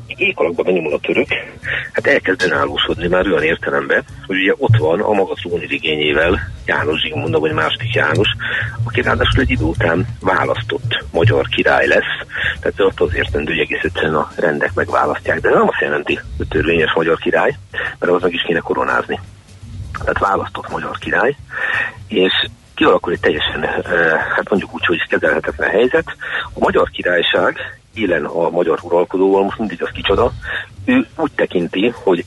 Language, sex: Hungarian, male